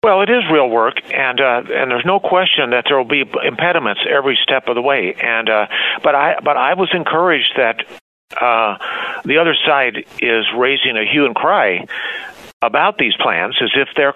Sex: male